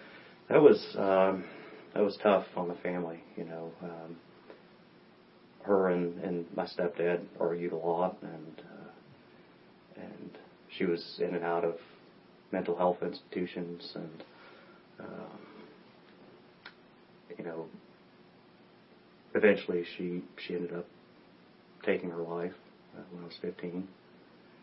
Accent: American